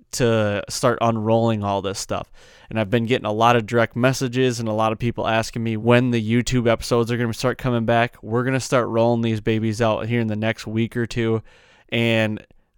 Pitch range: 110-125 Hz